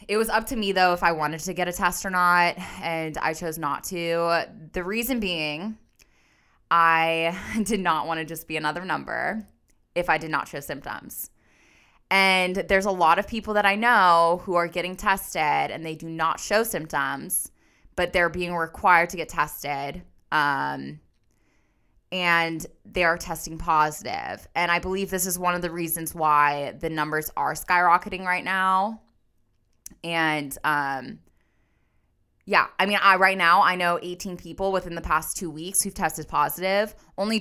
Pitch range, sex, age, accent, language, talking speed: 150-190 Hz, female, 10-29, American, English, 170 wpm